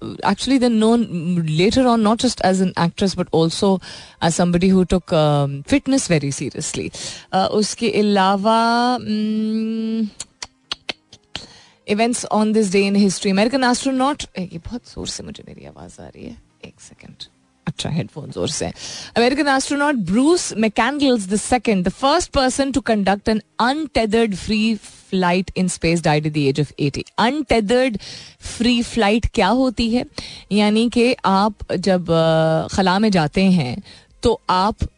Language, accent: Hindi, native